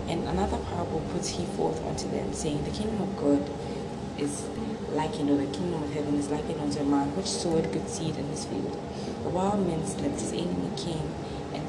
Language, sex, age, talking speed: English, female, 20-39, 225 wpm